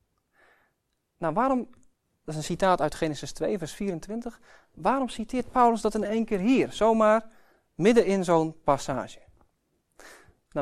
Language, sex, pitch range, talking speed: Dutch, male, 160-220 Hz, 140 wpm